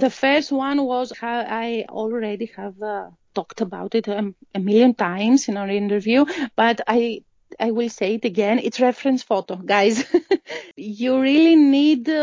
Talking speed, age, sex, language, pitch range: 155 wpm, 30-49, female, English, 225-275 Hz